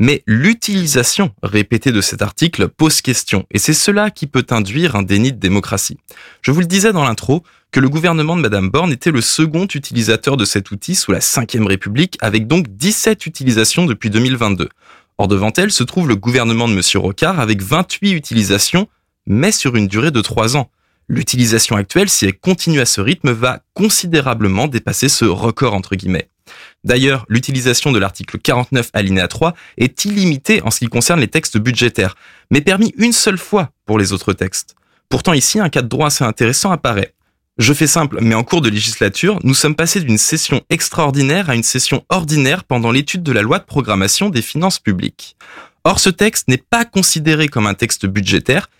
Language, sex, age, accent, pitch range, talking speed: French, male, 20-39, French, 110-165 Hz, 190 wpm